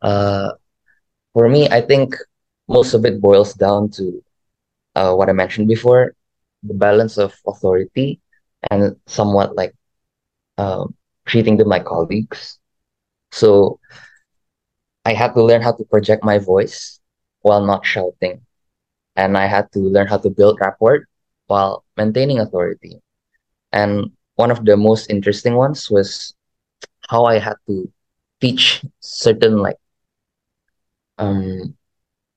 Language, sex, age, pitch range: English, male, 20-39, 95-115 Hz